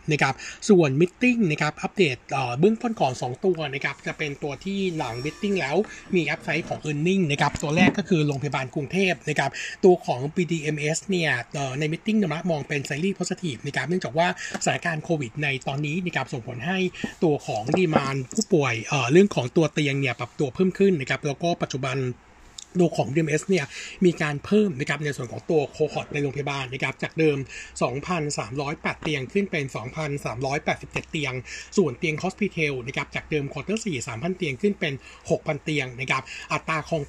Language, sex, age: Thai, male, 60-79